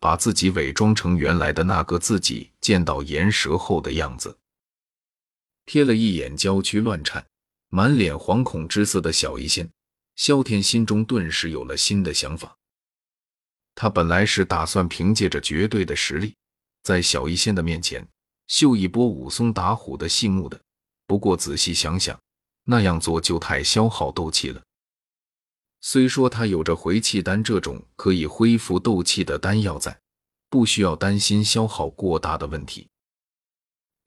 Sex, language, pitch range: male, Chinese, 85-110 Hz